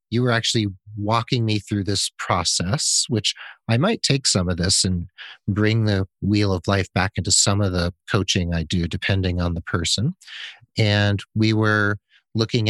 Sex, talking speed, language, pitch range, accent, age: male, 175 wpm, English, 90-115 Hz, American, 40-59